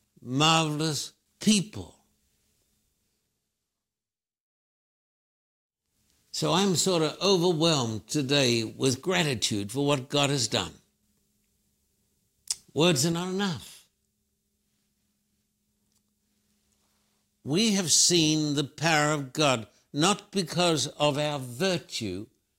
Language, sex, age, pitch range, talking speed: English, male, 60-79, 125-165 Hz, 80 wpm